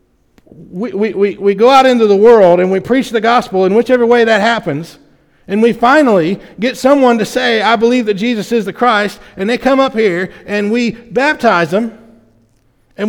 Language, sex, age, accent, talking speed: English, male, 40-59, American, 195 wpm